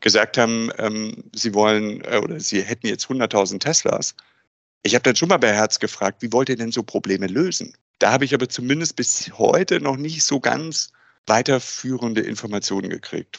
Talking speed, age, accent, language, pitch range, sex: 185 wpm, 50-69, German, German, 110-140 Hz, male